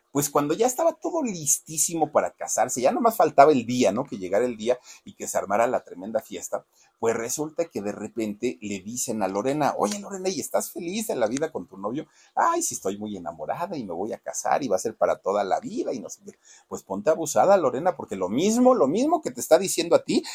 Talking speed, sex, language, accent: 240 wpm, male, Spanish, Mexican